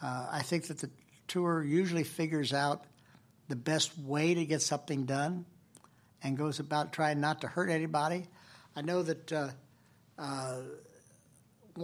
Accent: American